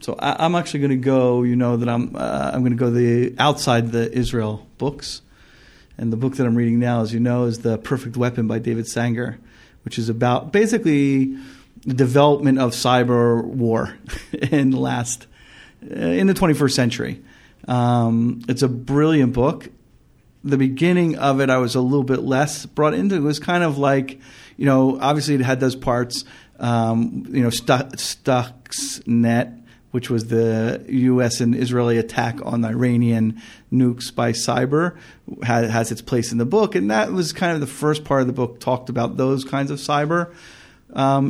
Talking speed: 180 wpm